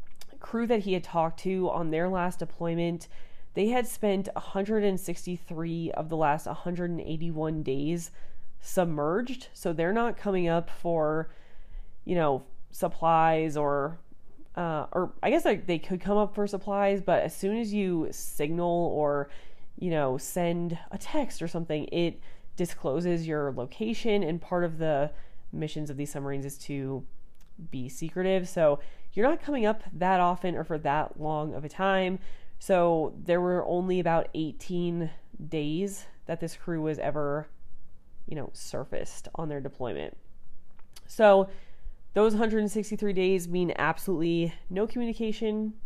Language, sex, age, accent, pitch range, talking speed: English, female, 30-49, American, 160-195 Hz, 145 wpm